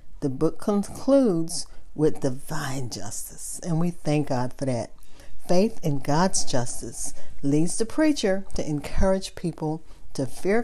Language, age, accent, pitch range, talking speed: English, 50-69, American, 140-180 Hz, 135 wpm